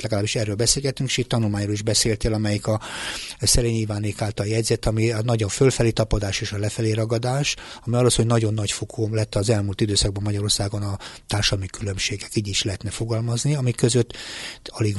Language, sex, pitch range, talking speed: Hungarian, male, 105-125 Hz, 180 wpm